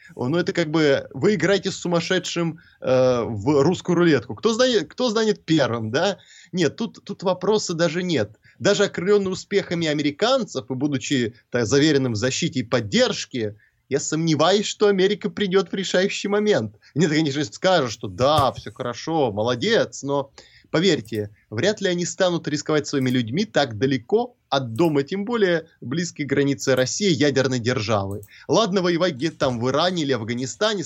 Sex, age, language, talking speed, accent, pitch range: male, 20-39, Russian, 160 wpm, native, 130-185 Hz